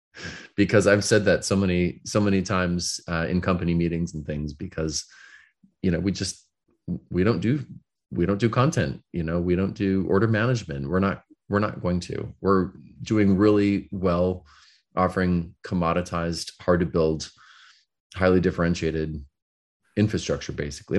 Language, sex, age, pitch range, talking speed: English, male, 30-49, 85-100 Hz, 150 wpm